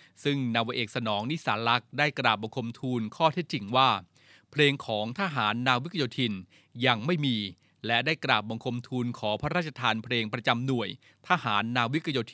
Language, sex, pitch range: Thai, male, 115-140 Hz